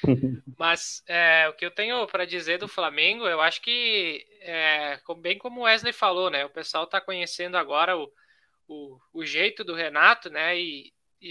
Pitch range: 170-215 Hz